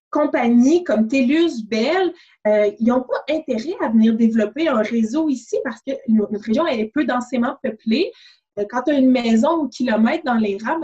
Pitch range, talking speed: 220-300 Hz, 195 wpm